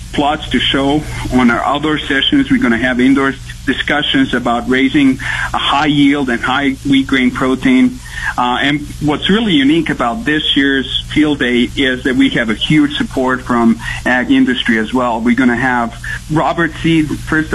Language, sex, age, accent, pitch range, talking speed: English, male, 50-69, American, 125-185 Hz, 180 wpm